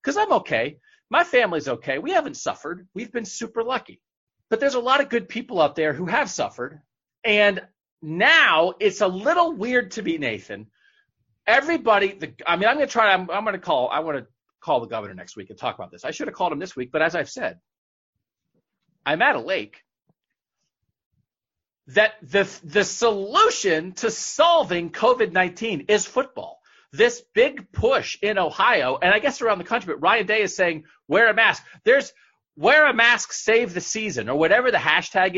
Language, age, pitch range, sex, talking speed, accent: English, 40-59, 185-275 Hz, male, 190 wpm, American